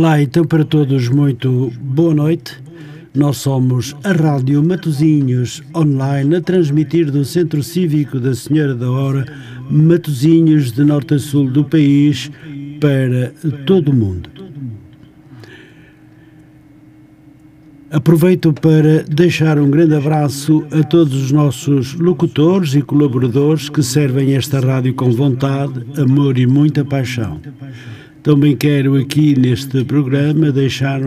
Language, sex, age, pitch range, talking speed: Portuguese, male, 60-79, 135-150 Hz, 120 wpm